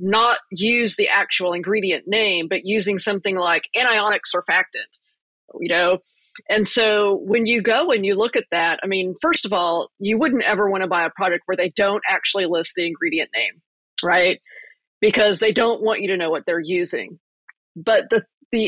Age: 40-59